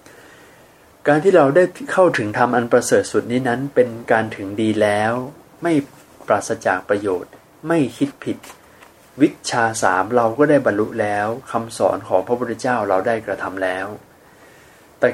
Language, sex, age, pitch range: Thai, male, 20-39, 105-145 Hz